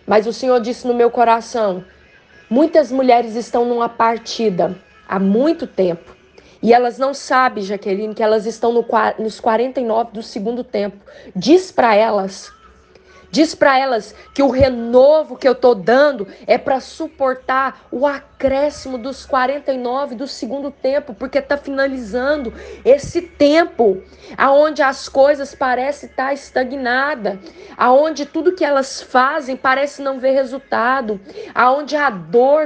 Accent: Brazilian